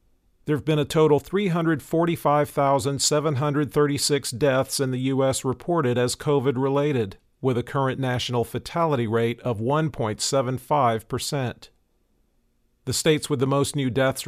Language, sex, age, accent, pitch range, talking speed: English, male, 50-69, American, 125-145 Hz, 120 wpm